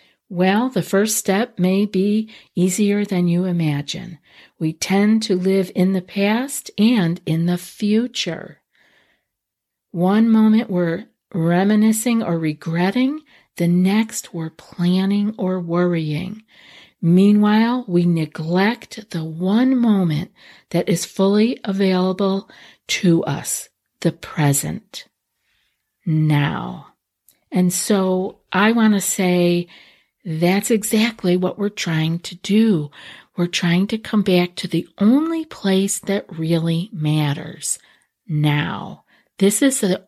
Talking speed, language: 115 wpm, English